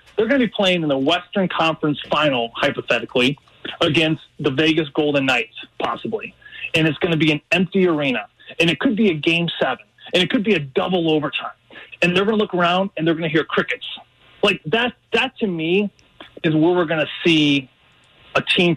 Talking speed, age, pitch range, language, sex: 205 wpm, 20-39, 145-180 Hz, English, male